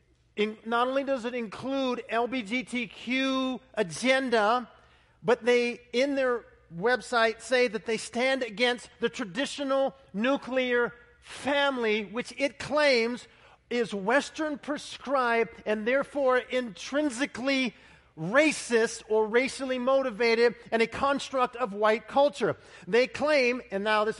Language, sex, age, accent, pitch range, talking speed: English, male, 40-59, American, 230-275 Hz, 115 wpm